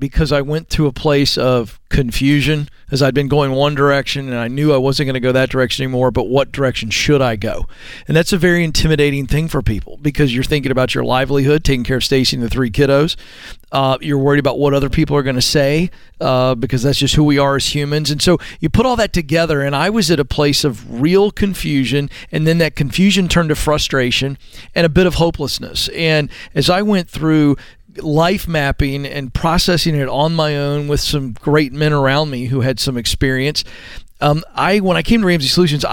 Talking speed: 220 wpm